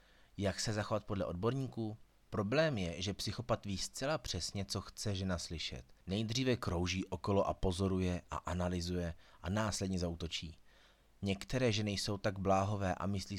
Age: 30-49